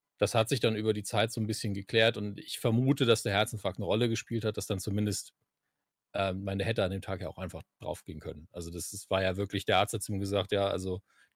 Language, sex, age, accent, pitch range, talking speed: German, male, 40-59, German, 100-120 Hz, 265 wpm